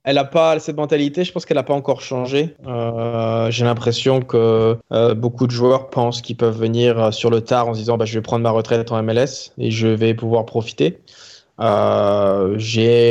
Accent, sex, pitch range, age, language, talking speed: French, male, 115-140 Hz, 20-39, French, 210 wpm